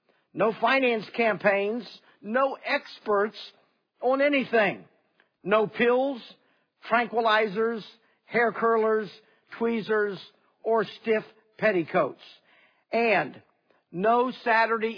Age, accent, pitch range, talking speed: 50-69, American, 175-225 Hz, 75 wpm